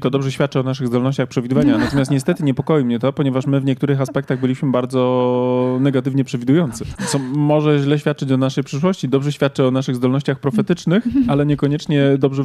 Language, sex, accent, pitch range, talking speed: Polish, male, native, 125-145 Hz, 180 wpm